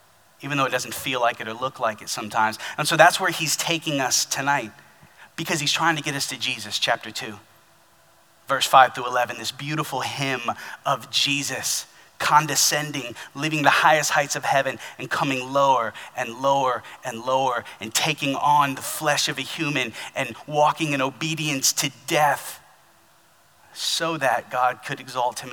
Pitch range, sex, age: 115-145 Hz, male, 30-49